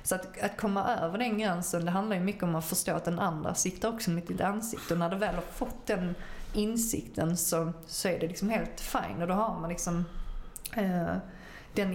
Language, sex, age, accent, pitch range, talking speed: English, female, 30-49, Swedish, 170-200 Hz, 220 wpm